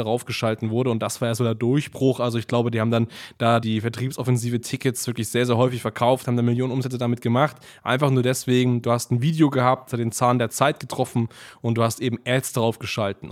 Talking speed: 235 wpm